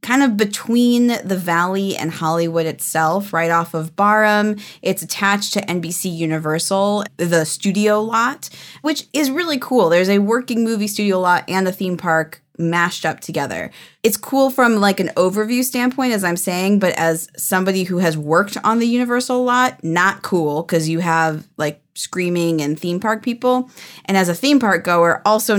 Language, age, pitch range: English, 20-39, 165-215 Hz